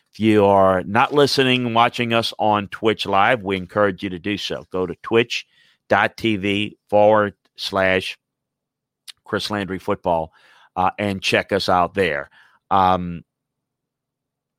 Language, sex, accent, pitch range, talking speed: English, male, American, 90-120 Hz, 130 wpm